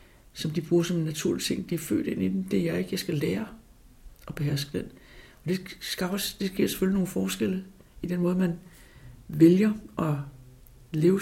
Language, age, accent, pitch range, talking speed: Danish, 60-79, native, 145-190 Hz, 210 wpm